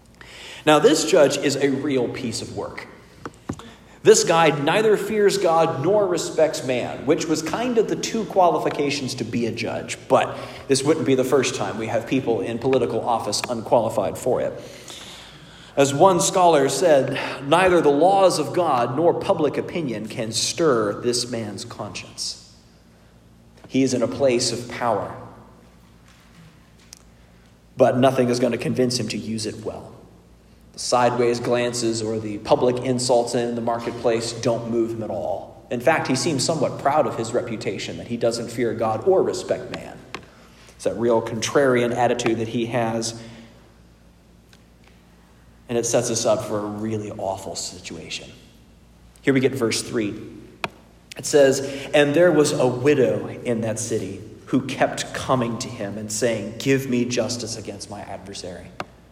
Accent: American